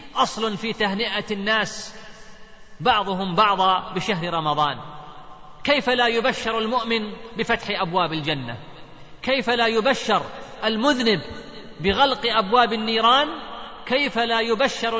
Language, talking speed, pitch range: Arabic, 100 wpm, 195-235 Hz